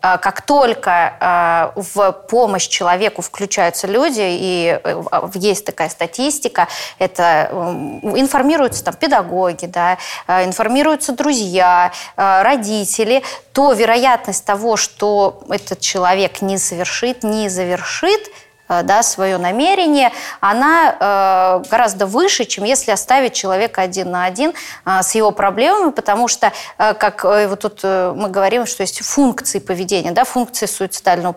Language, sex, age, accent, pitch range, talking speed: Russian, female, 20-39, native, 190-260 Hz, 110 wpm